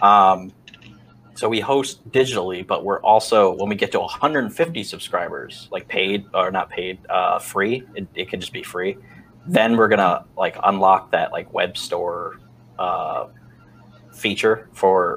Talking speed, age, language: 155 wpm, 20-39, English